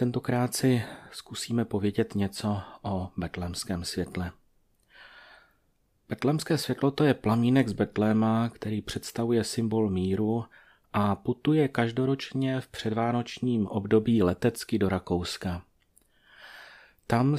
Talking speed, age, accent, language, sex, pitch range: 100 wpm, 30-49, native, Czech, male, 105-125 Hz